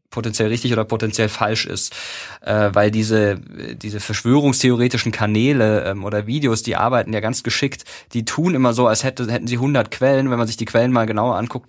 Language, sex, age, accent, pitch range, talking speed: German, male, 20-39, German, 110-130 Hz, 180 wpm